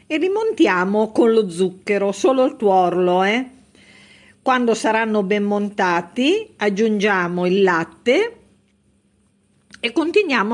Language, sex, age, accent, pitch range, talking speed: Italian, female, 50-69, native, 175-225 Hz, 100 wpm